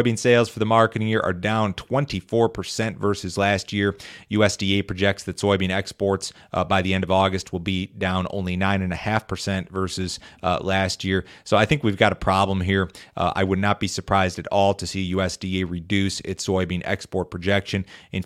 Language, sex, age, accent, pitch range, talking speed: English, male, 30-49, American, 90-100 Hz, 195 wpm